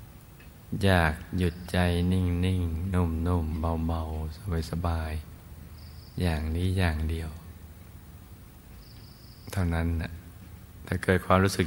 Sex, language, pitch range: male, Thai, 85-90 Hz